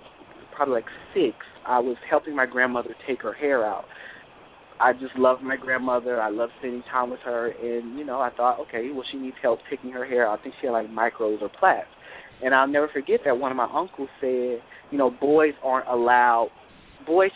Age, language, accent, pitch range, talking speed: 20-39, English, American, 125-150 Hz, 210 wpm